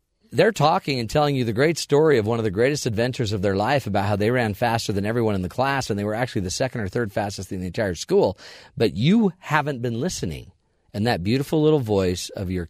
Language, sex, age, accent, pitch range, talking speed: English, male, 50-69, American, 90-125 Hz, 245 wpm